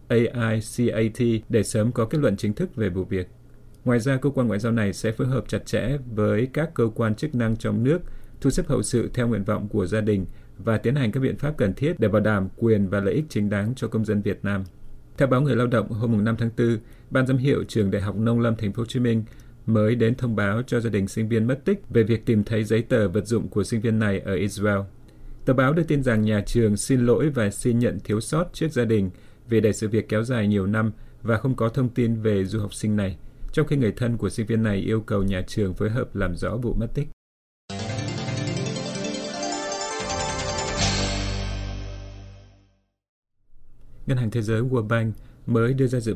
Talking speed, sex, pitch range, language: 225 wpm, male, 105-120 Hz, Vietnamese